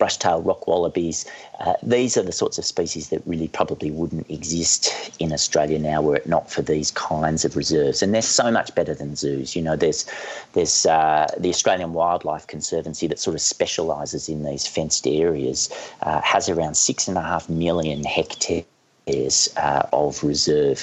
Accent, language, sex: Australian, English, male